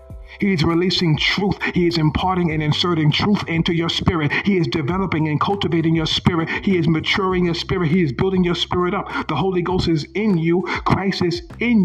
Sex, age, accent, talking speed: male, 50-69, American, 205 wpm